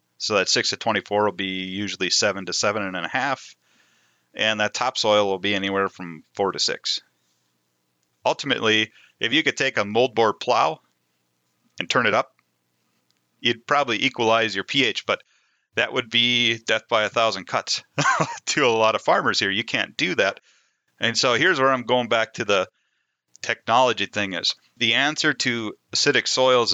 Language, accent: English, American